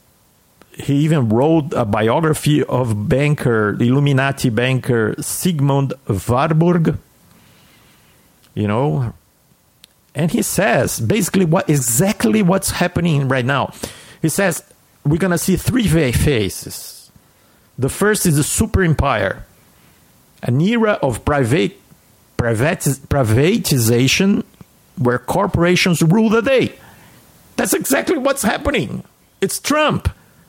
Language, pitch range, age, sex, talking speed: English, 130-195 Hz, 50-69, male, 100 wpm